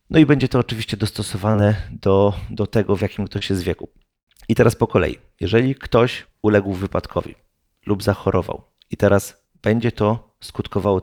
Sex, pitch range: male, 100-115 Hz